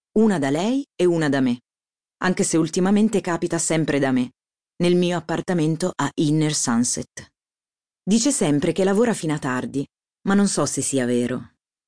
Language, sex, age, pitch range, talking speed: Italian, female, 30-49, 135-185 Hz, 165 wpm